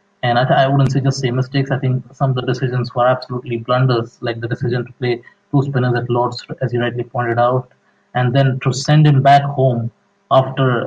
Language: English